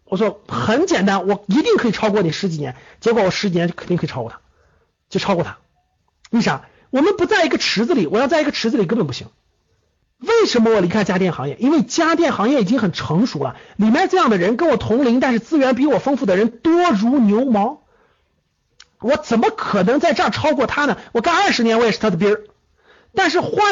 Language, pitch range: Chinese, 195-280 Hz